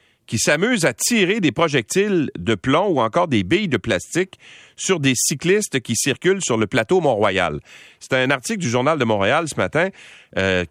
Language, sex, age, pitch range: French, male, 40-59, 105-165 Hz